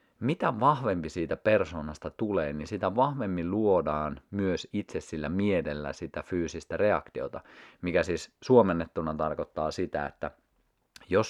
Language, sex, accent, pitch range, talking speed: Finnish, male, native, 75-100 Hz, 120 wpm